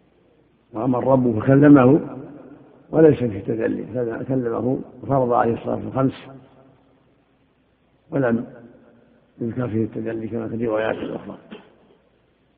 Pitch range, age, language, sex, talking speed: 120-135 Hz, 60-79, Arabic, male, 90 wpm